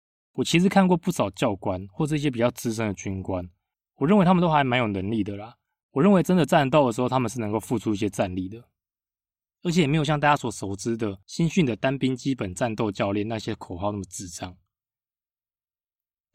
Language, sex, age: Chinese, male, 20-39